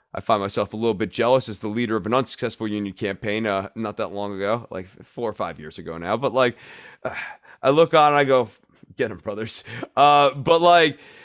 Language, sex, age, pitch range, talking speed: English, male, 30-49, 125-165 Hz, 225 wpm